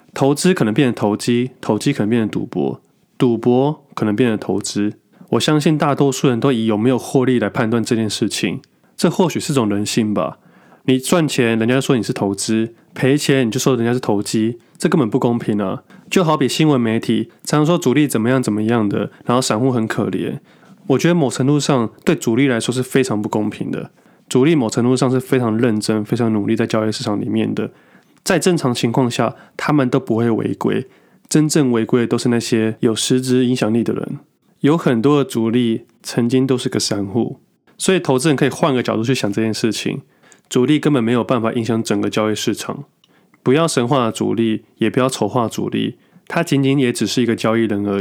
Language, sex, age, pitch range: Chinese, male, 20-39, 110-140 Hz